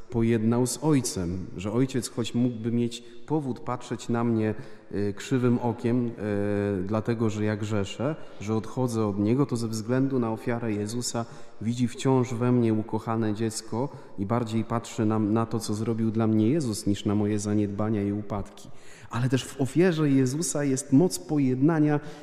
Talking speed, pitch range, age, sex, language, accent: 160 wpm, 110-145 Hz, 30-49, male, Polish, native